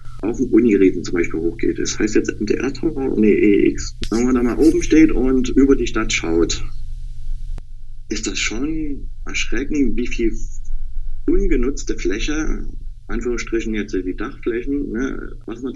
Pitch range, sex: 105-130 Hz, male